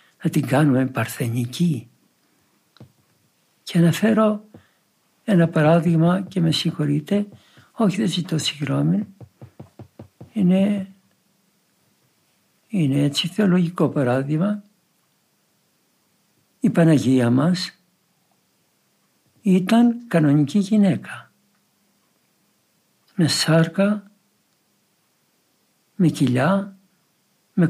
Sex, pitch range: male, 150-195 Hz